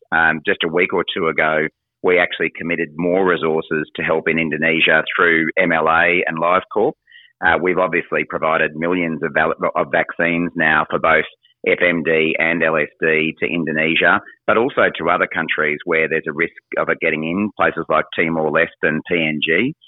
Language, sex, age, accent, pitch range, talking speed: English, male, 30-49, Australian, 80-85 Hz, 160 wpm